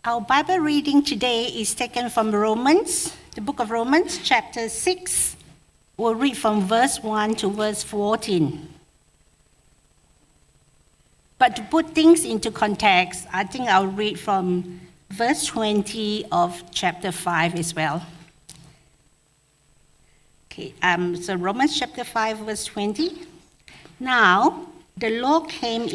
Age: 50-69